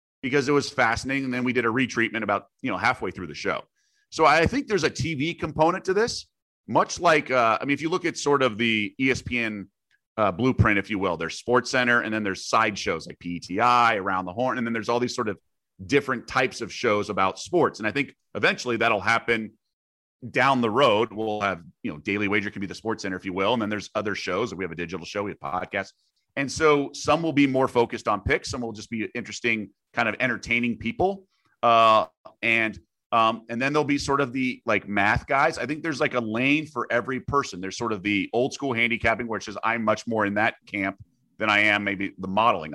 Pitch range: 105-130 Hz